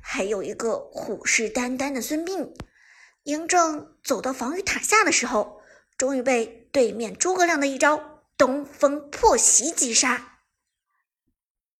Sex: male